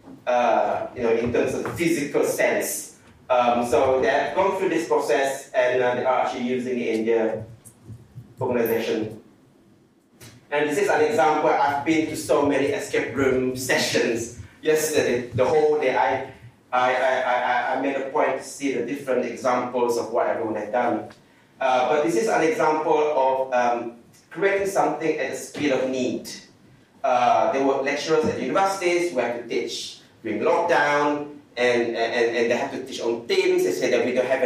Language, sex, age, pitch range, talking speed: English, male, 30-49, 120-155 Hz, 185 wpm